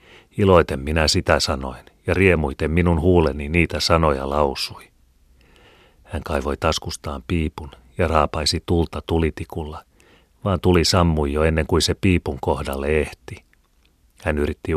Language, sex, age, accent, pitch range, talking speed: Finnish, male, 30-49, native, 75-90 Hz, 125 wpm